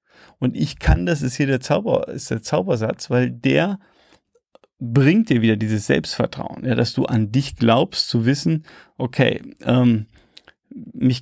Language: German